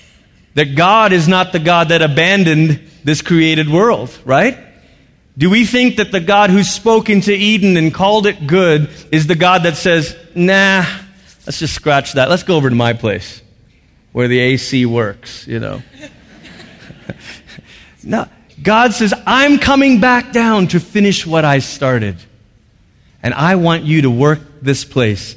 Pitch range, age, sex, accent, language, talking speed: 140-195 Hz, 30-49, male, American, English, 160 wpm